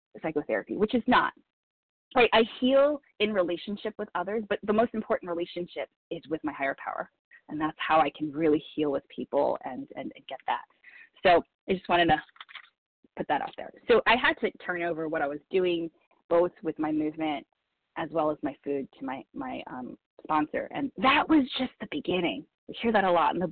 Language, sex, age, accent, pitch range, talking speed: English, female, 20-39, American, 155-230 Hz, 205 wpm